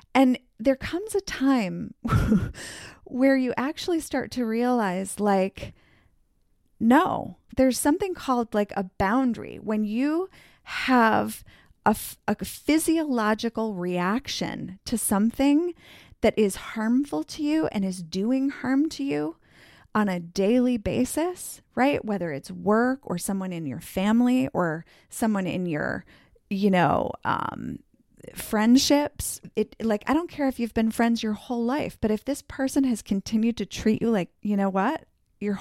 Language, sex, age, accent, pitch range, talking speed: English, female, 30-49, American, 205-265 Hz, 145 wpm